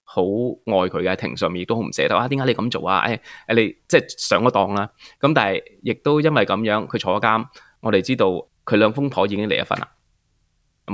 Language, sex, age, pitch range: Chinese, male, 20-39, 100-140 Hz